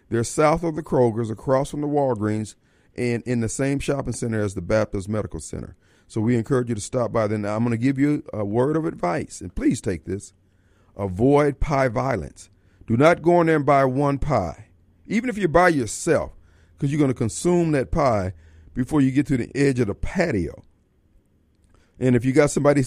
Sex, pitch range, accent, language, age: male, 105-150 Hz, American, Japanese, 40-59